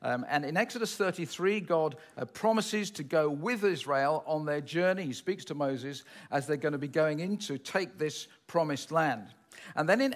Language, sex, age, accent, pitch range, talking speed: English, male, 50-69, British, 145-210 Hz, 200 wpm